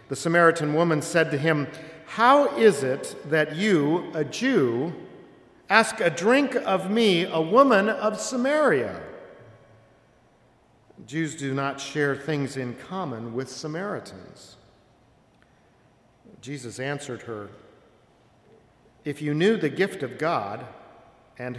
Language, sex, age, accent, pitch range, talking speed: English, male, 50-69, American, 135-190 Hz, 115 wpm